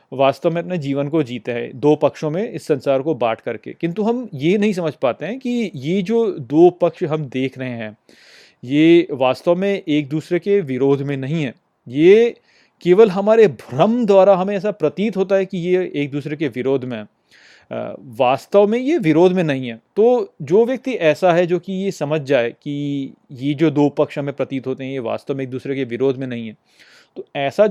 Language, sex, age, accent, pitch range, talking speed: Hindi, male, 30-49, native, 140-195 Hz, 210 wpm